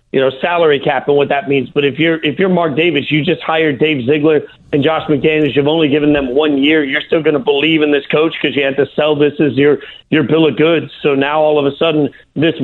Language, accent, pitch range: English, American, 145-165 Hz